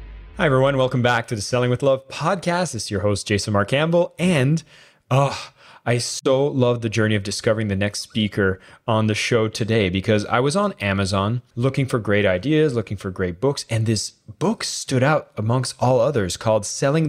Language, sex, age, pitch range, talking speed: English, male, 20-39, 105-140 Hz, 195 wpm